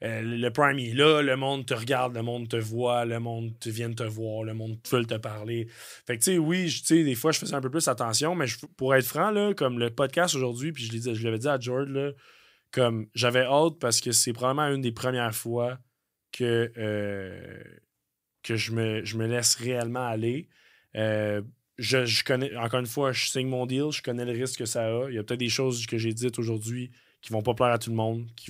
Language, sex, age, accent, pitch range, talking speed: French, male, 20-39, Canadian, 115-130 Hz, 245 wpm